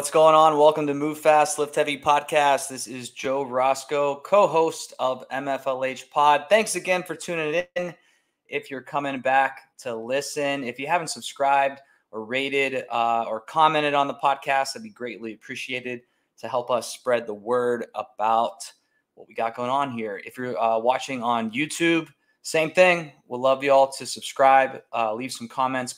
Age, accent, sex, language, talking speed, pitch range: 20-39, American, male, English, 180 wpm, 115-145 Hz